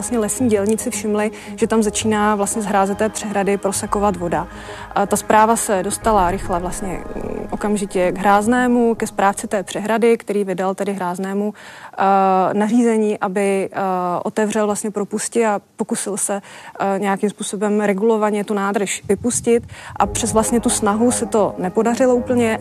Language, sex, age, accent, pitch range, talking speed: Czech, female, 30-49, native, 195-215 Hz, 145 wpm